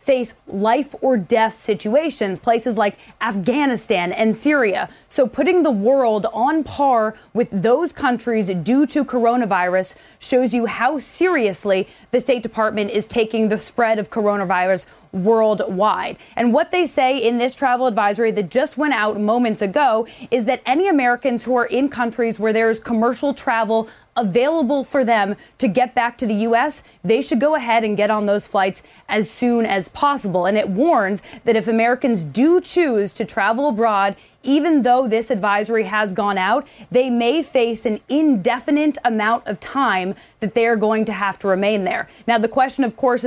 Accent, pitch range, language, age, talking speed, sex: American, 215-260 Hz, English, 20-39, 170 wpm, female